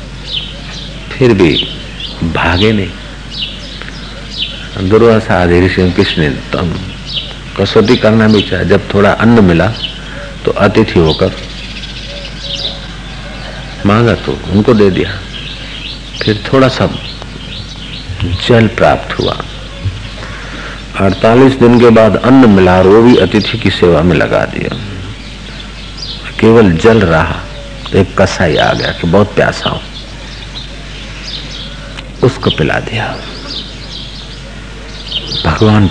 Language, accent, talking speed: Hindi, native, 100 wpm